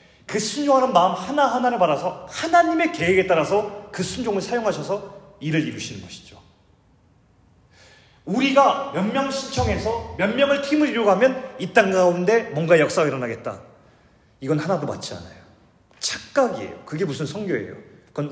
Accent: native